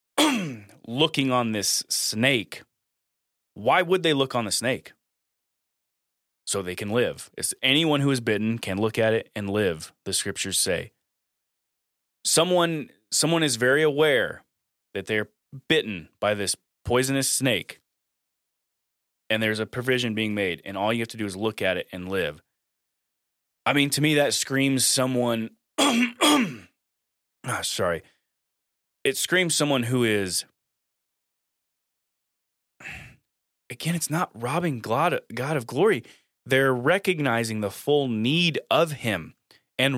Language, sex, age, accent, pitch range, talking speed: English, male, 20-39, American, 105-145 Hz, 130 wpm